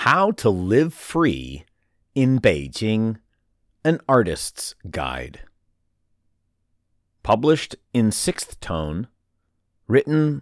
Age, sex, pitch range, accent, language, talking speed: 40-59, male, 90-130 Hz, American, English, 80 wpm